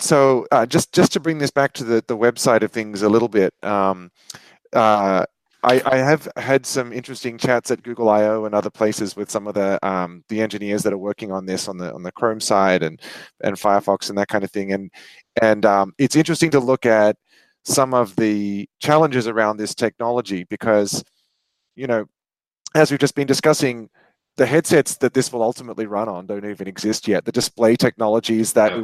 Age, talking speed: 30-49, 205 wpm